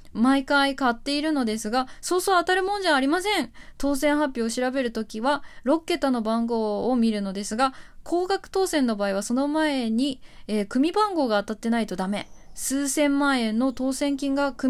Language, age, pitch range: Japanese, 20-39, 225-295 Hz